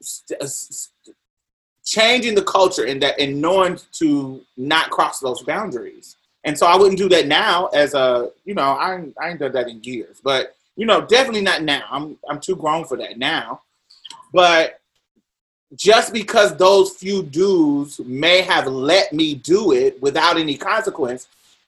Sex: male